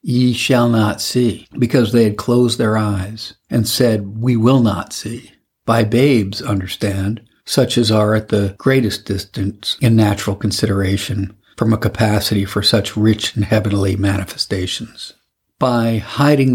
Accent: American